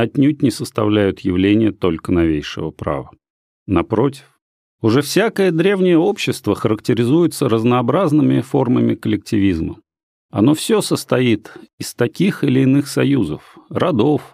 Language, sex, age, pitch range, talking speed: Russian, male, 40-59, 110-160 Hz, 105 wpm